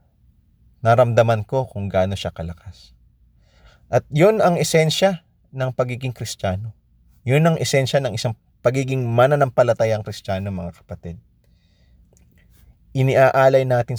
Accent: native